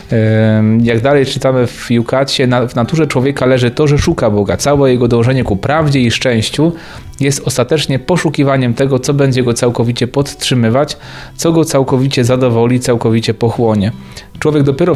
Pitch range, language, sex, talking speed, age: 115-135 Hz, Polish, male, 150 wpm, 30-49